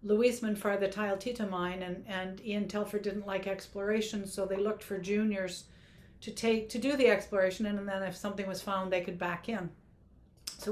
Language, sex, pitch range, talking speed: English, female, 185-210 Hz, 195 wpm